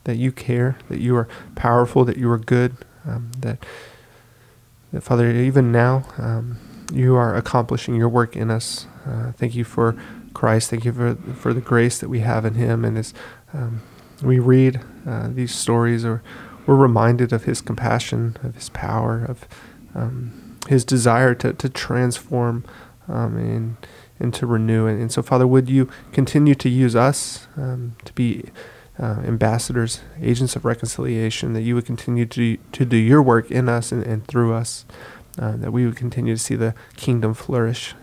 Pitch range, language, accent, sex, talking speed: 115-130 Hz, English, American, male, 175 wpm